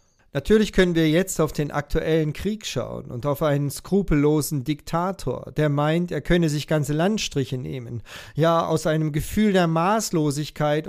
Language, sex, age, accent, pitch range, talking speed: German, male, 40-59, German, 150-190 Hz, 155 wpm